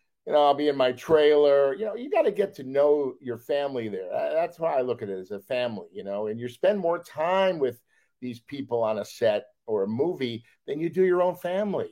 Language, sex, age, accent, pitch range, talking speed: English, male, 50-69, American, 125-175 Hz, 245 wpm